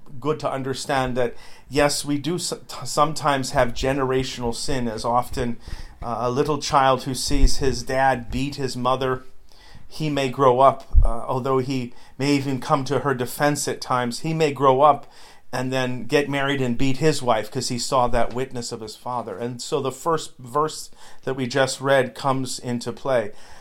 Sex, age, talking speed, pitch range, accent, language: male, 40-59, 180 wpm, 125-145 Hz, American, English